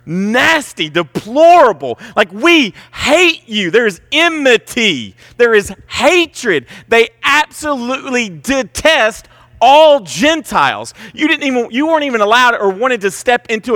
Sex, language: male, English